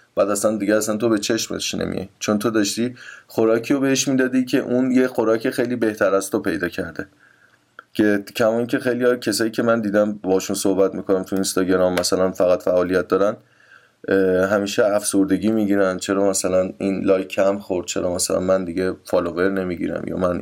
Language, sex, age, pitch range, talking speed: Persian, male, 20-39, 95-120 Hz, 175 wpm